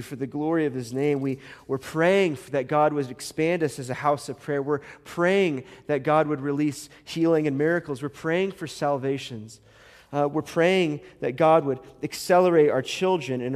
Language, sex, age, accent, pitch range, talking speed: English, male, 30-49, American, 120-155 Hz, 190 wpm